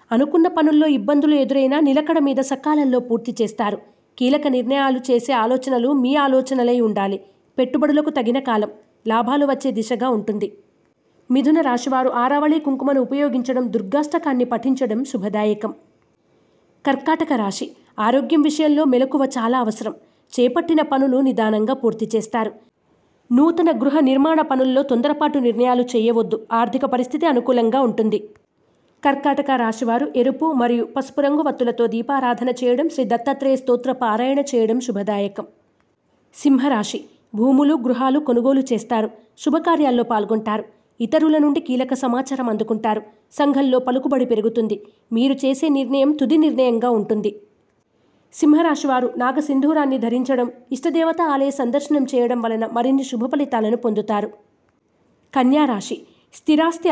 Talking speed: 110 wpm